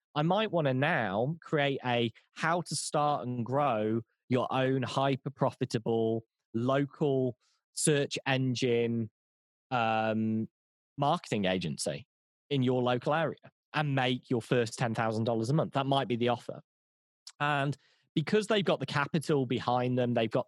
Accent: British